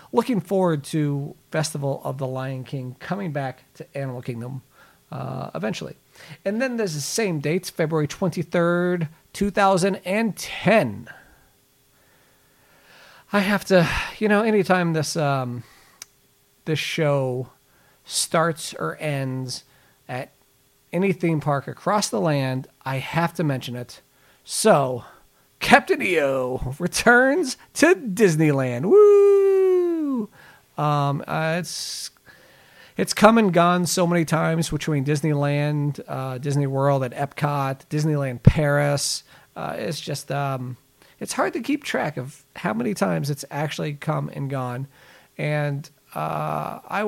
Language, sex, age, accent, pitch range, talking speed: English, male, 40-59, American, 135-190 Hz, 120 wpm